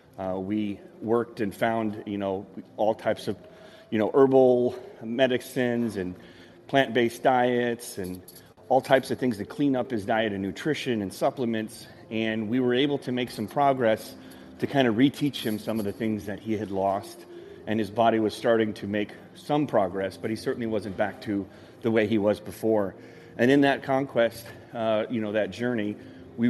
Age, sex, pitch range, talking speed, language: 30-49, male, 105-125 Hz, 185 wpm, English